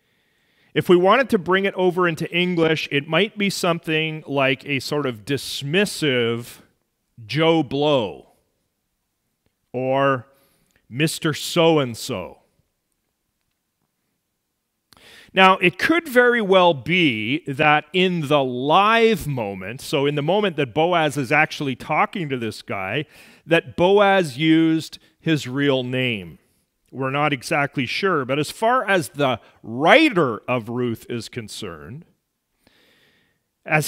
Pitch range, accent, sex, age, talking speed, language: 130-180 Hz, American, male, 40-59, 120 wpm, English